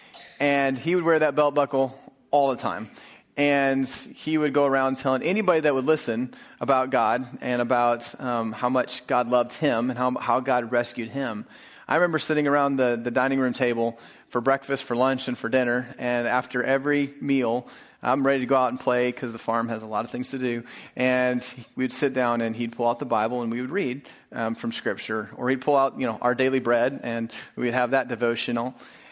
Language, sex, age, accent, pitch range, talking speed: English, male, 30-49, American, 115-135 Hz, 215 wpm